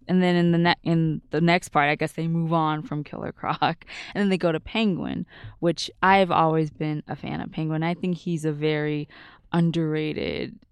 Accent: American